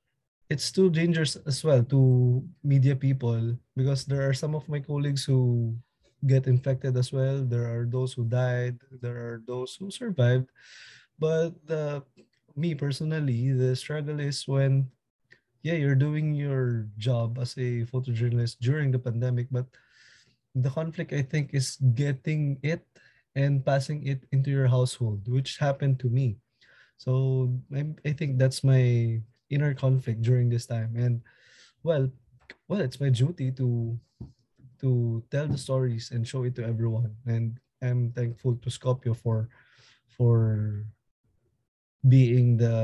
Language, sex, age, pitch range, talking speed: English, male, 20-39, 120-140 Hz, 145 wpm